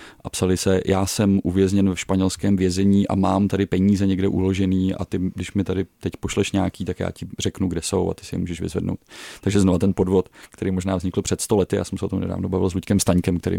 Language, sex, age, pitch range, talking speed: Czech, male, 30-49, 95-100 Hz, 245 wpm